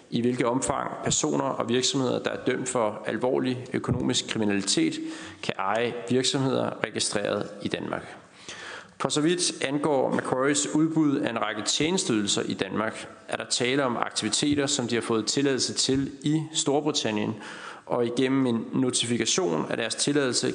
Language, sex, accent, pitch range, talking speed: Danish, male, native, 120-150 Hz, 150 wpm